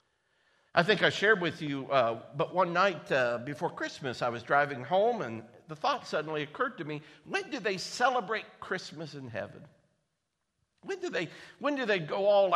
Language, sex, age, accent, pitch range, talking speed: English, male, 50-69, American, 155-230 Hz, 175 wpm